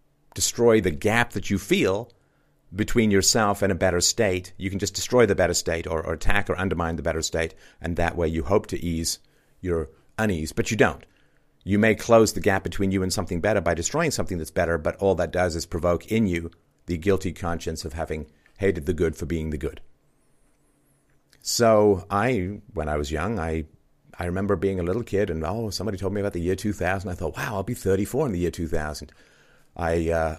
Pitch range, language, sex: 80-100 Hz, English, male